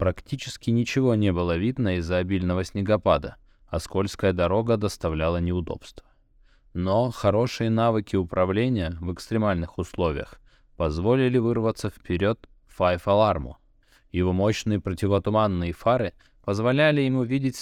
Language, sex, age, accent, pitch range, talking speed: Russian, male, 20-39, native, 85-115 Hz, 110 wpm